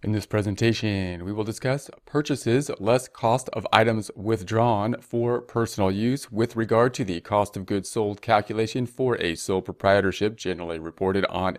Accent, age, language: American, 30-49, English